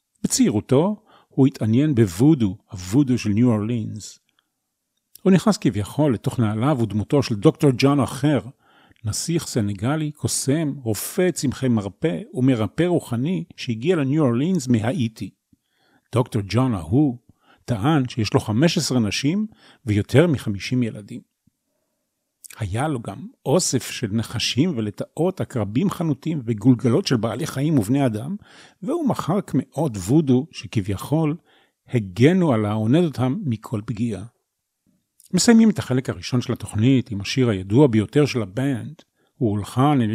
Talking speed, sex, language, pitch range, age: 125 wpm, male, Hebrew, 115-150 Hz, 40-59